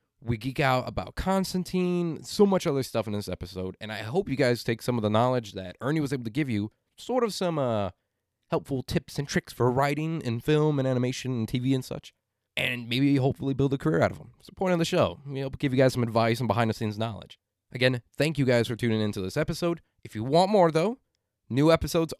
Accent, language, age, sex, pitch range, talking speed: American, English, 30-49, male, 110-155 Hz, 240 wpm